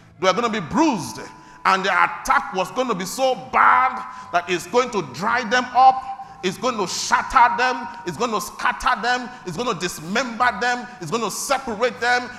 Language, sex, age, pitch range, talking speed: English, male, 40-59, 180-250 Hz, 205 wpm